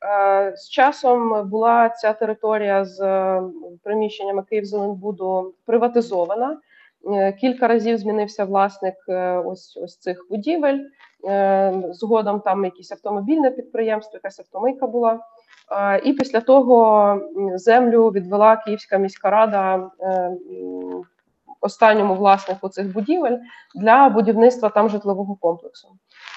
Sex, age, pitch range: female, 20-39, 195-230 Hz